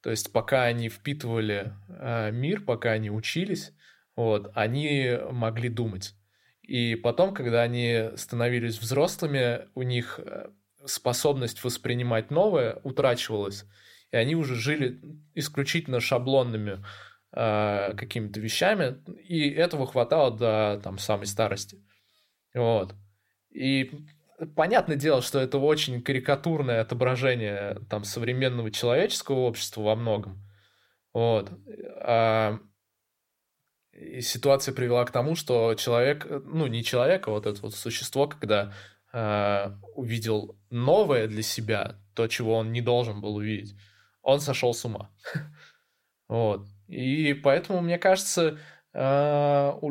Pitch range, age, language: 110-140 Hz, 20-39, Russian